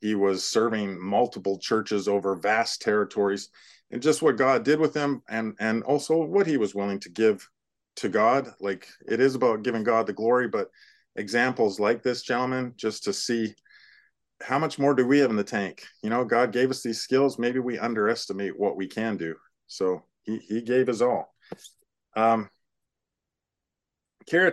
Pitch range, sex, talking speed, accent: 110-155 Hz, male, 180 wpm, American